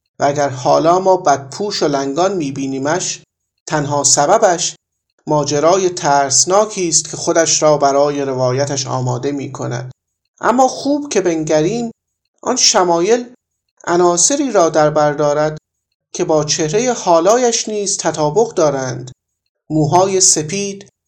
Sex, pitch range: male, 140-190 Hz